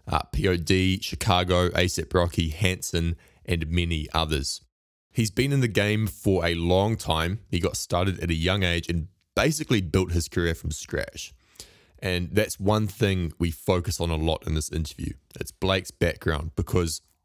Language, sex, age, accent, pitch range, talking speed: English, male, 20-39, Australian, 85-105 Hz, 165 wpm